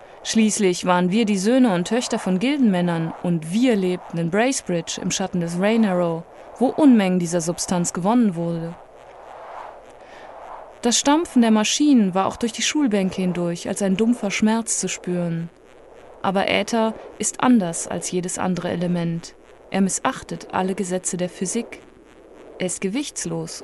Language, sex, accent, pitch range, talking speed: German, female, German, 180-245 Hz, 145 wpm